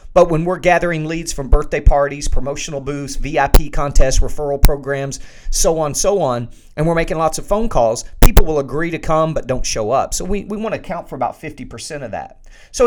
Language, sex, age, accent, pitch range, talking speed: English, male, 40-59, American, 145-195 Hz, 215 wpm